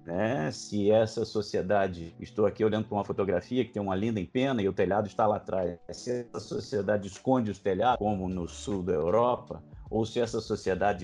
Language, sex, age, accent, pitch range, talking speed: Portuguese, male, 50-69, Brazilian, 90-125 Hz, 190 wpm